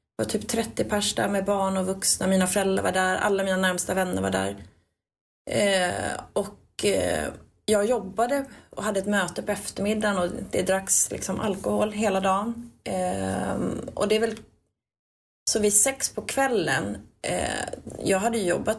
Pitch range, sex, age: 180-210 Hz, female, 30-49